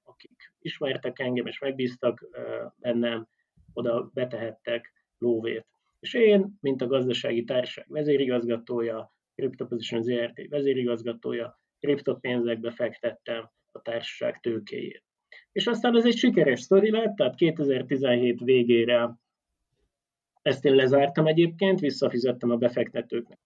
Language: Hungarian